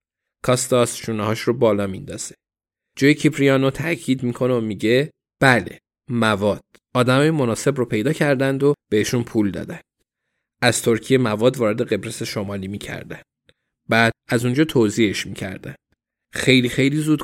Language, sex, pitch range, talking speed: Persian, male, 110-140 Hz, 130 wpm